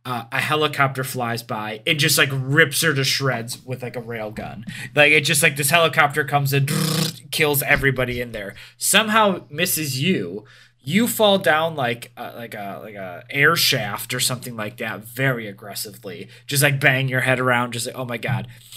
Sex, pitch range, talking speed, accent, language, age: male, 125-155 Hz, 195 wpm, American, English, 20-39